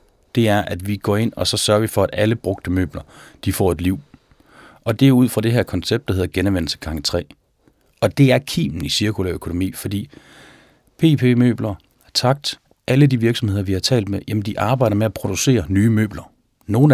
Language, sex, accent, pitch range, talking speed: Danish, male, native, 95-120 Hz, 210 wpm